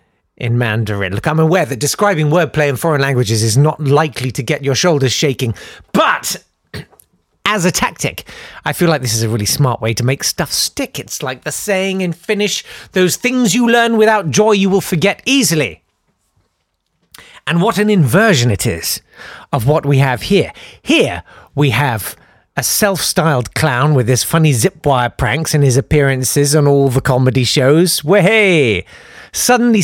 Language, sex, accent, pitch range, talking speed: English, male, British, 130-190 Hz, 165 wpm